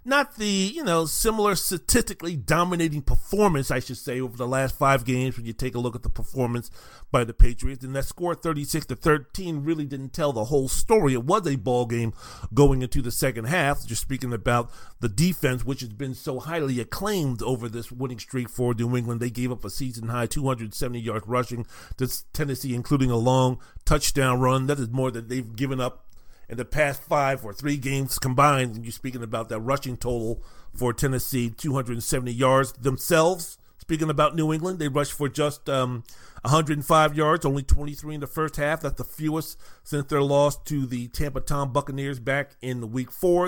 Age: 40-59